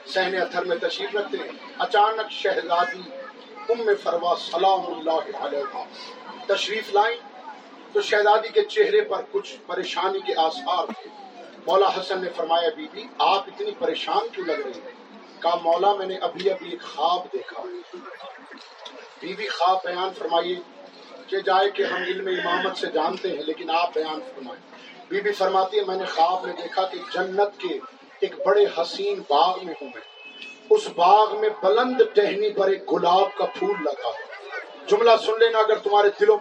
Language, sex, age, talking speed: Urdu, male, 50-69, 105 wpm